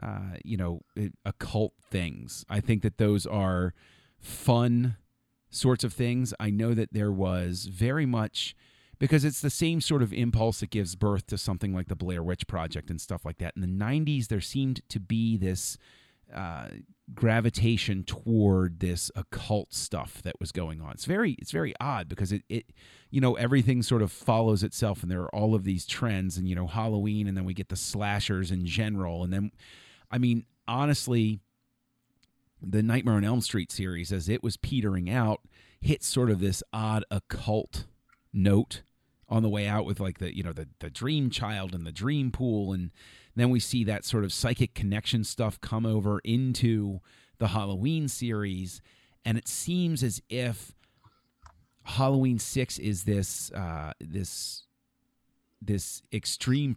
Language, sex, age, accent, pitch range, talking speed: English, male, 30-49, American, 95-120 Hz, 170 wpm